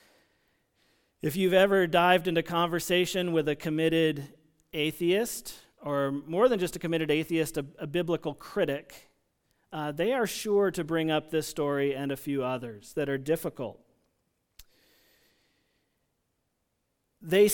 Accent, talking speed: American, 130 wpm